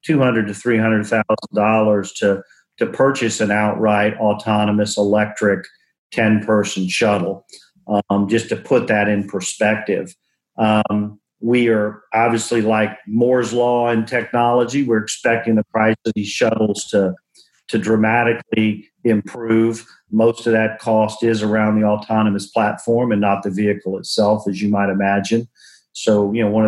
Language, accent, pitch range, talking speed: English, American, 105-120 Hz, 150 wpm